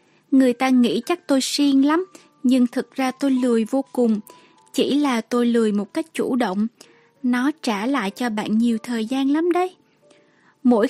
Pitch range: 235-285 Hz